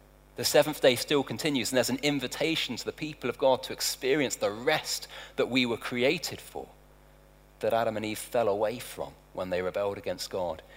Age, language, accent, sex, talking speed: 40-59, English, British, male, 195 wpm